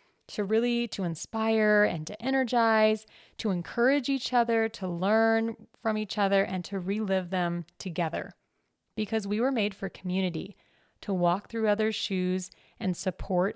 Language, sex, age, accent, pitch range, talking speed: English, female, 30-49, American, 175-220 Hz, 150 wpm